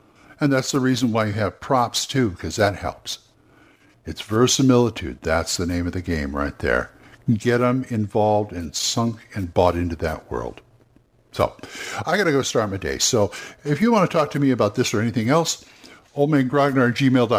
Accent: American